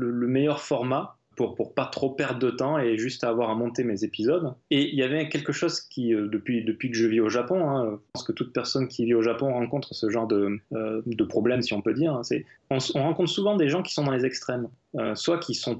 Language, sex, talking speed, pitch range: French, male, 260 wpm, 115-145 Hz